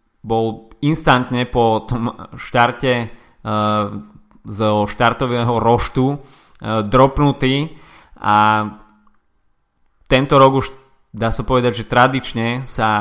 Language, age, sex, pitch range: Slovak, 20-39, male, 110-130 Hz